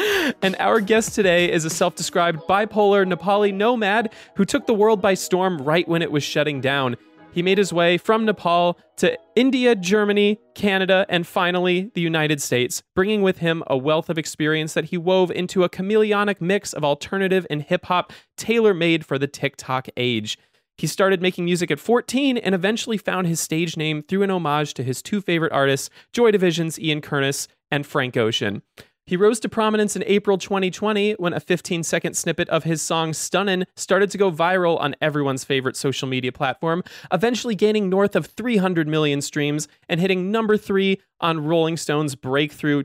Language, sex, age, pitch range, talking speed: English, male, 30-49, 155-200 Hz, 180 wpm